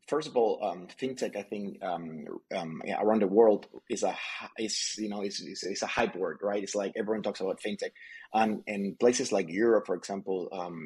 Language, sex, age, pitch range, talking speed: English, male, 30-49, 95-110 Hz, 220 wpm